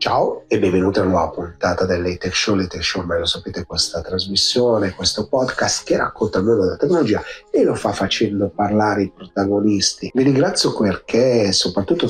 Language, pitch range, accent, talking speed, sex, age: Italian, 95-120 Hz, native, 180 wpm, male, 40-59